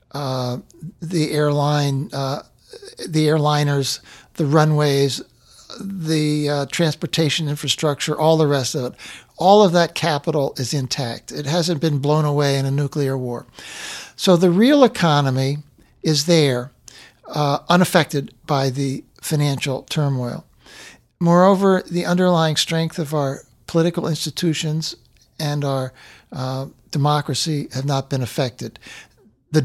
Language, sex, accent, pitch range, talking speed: English, male, American, 135-165 Hz, 125 wpm